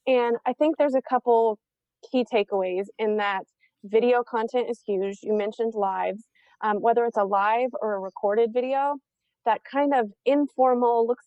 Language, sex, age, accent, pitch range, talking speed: English, female, 30-49, American, 200-235 Hz, 165 wpm